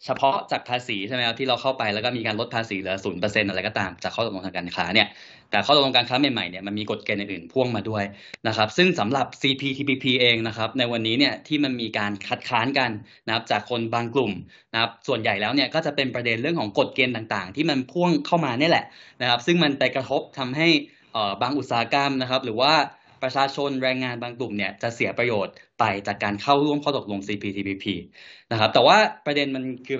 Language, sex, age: Thai, male, 10-29